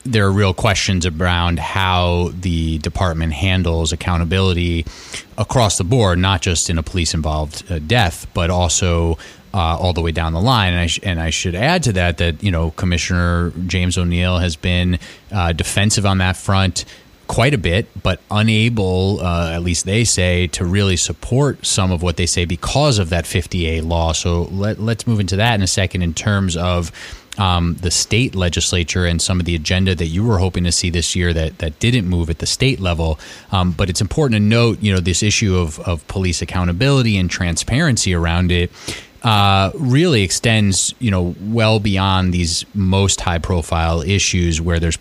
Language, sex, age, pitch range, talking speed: English, male, 30-49, 85-100 Hz, 185 wpm